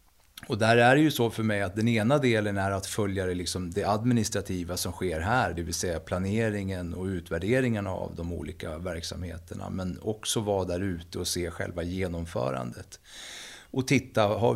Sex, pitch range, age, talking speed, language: male, 90-115 Hz, 30-49, 175 wpm, Swedish